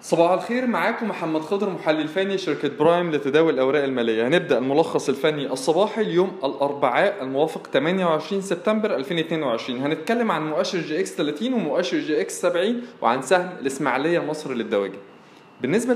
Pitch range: 140-195 Hz